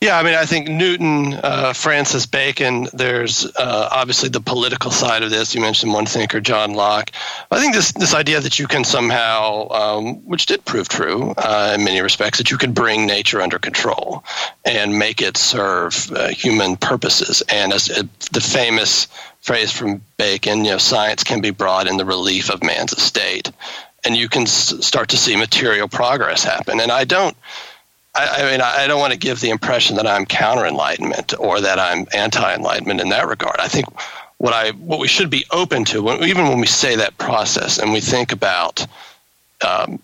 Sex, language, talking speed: male, English, 190 wpm